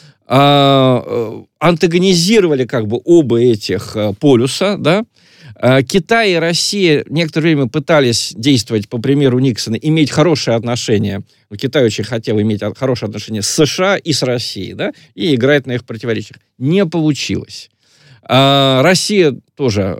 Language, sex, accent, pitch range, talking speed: Russian, male, native, 115-155 Hz, 125 wpm